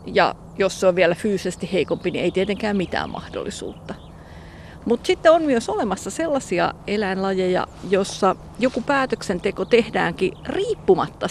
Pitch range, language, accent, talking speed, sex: 185-240 Hz, Finnish, native, 125 wpm, female